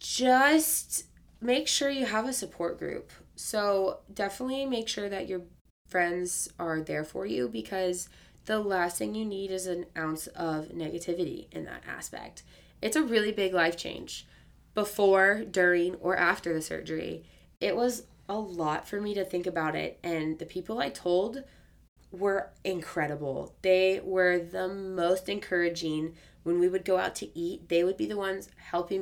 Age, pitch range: 20-39, 165-190 Hz